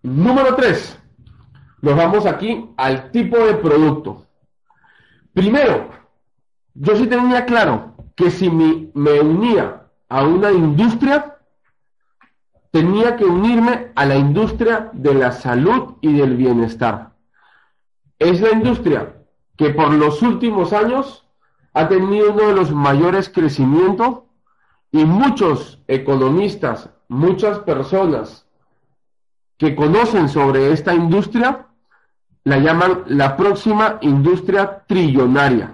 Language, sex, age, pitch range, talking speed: Spanish, male, 40-59, 140-205 Hz, 105 wpm